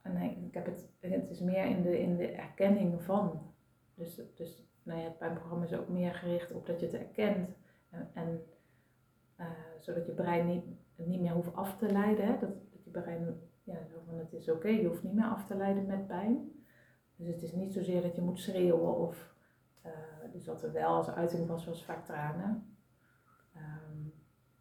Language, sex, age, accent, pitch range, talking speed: Dutch, female, 30-49, Dutch, 165-190 Hz, 200 wpm